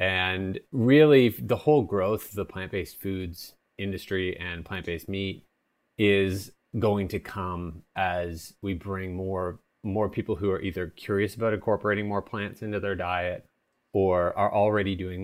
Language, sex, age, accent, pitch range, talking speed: English, male, 30-49, American, 90-105 Hz, 150 wpm